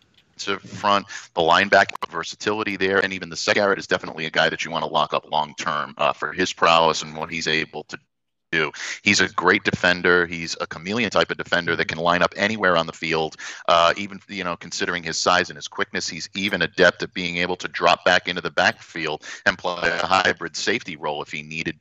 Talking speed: 215 wpm